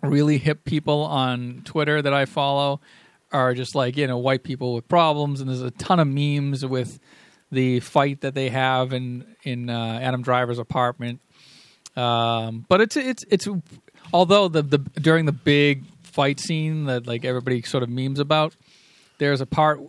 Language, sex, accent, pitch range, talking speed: English, male, American, 130-165 Hz, 180 wpm